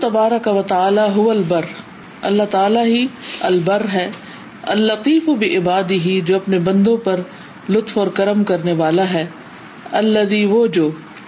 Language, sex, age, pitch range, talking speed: Urdu, female, 50-69, 185-225 Hz, 145 wpm